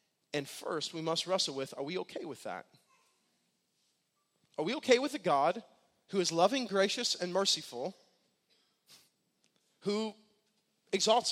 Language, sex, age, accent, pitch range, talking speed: English, male, 30-49, American, 215-275 Hz, 135 wpm